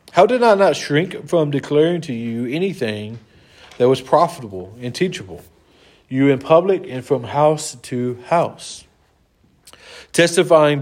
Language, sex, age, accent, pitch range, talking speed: English, male, 40-59, American, 125-165 Hz, 135 wpm